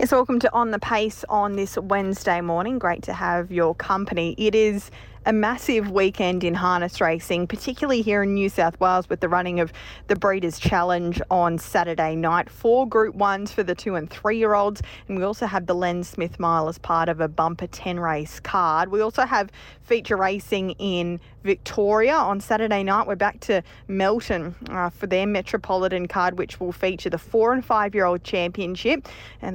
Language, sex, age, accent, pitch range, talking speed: English, female, 20-39, Australian, 175-205 Hz, 190 wpm